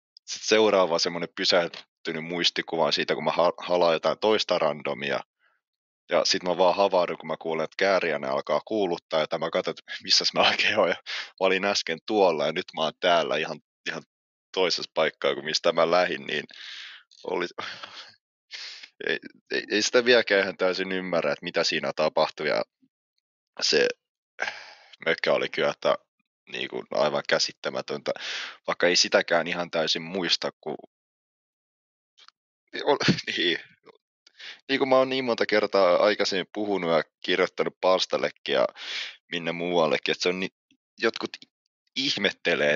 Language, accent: Finnish, native